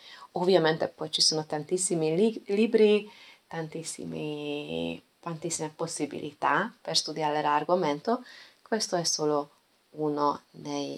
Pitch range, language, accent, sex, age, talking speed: 155-195 Hz, Italian, native, female, 20-39, 95 wpm